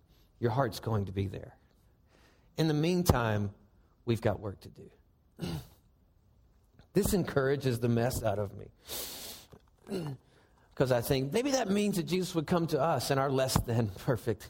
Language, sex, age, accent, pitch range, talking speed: English, male, 40-59, American, 110-160 Hz, 155 wpm